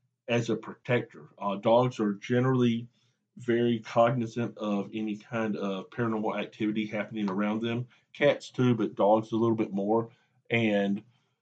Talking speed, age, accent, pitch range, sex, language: 140 wpm, 50-69, American, 110-130 Hz, male, English